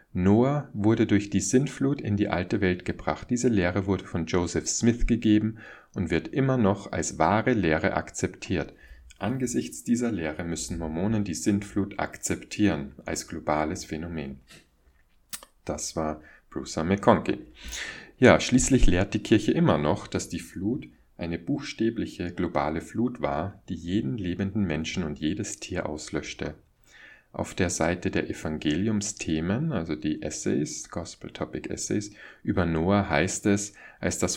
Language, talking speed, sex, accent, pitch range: German, 135 wpm, male, German, 80-105 Hz